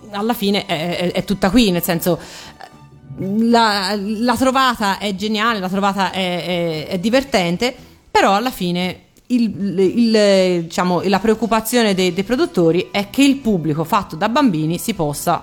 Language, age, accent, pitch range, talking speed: Italian, 40-59, native, 170-220 Hz, 155 wpm